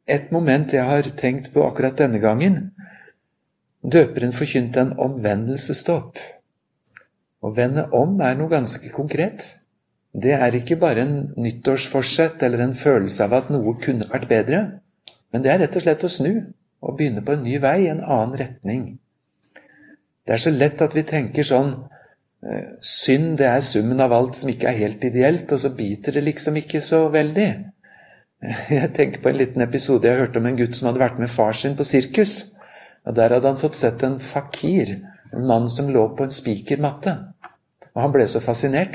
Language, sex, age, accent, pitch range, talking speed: English, male, 60-79, Swedish, 120-150 Hz, 185 wpm